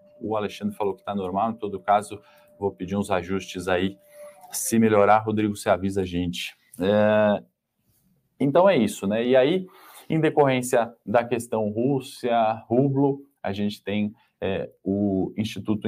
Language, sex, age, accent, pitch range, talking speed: Portuguese, male, 20-39, Brazilian, 95-115 Hz, 150 wpm